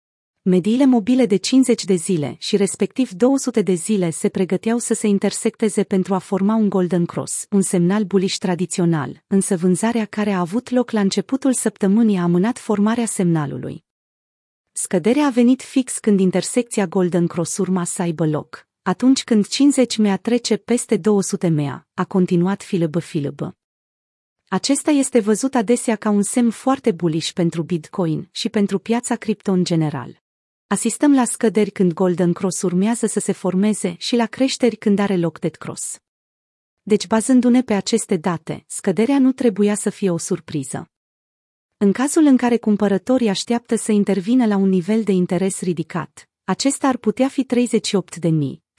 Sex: female